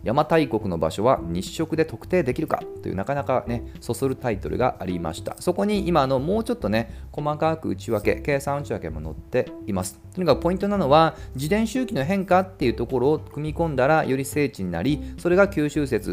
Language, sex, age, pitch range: Japanese, male, 40-59, 100-165 Hz